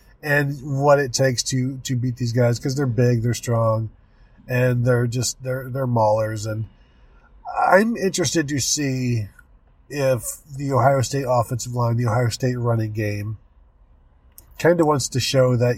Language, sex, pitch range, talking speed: English, male, 110-135 Hz, 160 wpm